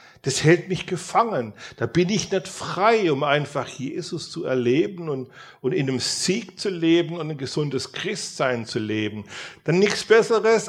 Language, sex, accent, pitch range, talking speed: English, male, German, 110-170 Hz, 170 wpm